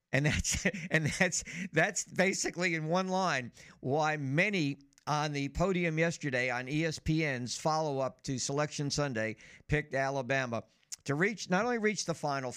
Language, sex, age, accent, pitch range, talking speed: English, male, 50-69, American, 125-165 Hz, 150 wpm